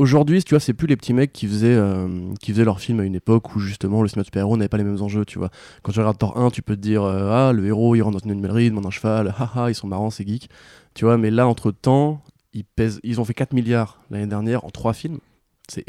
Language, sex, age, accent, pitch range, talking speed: French, male, 20-39, French, 105-130 Hz, 290 wpm